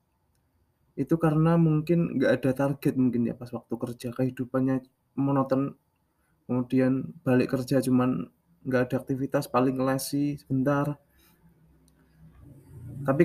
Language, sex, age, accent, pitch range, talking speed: Indonesian, male, 20-39, native, 125-145 Hz, 110 wpm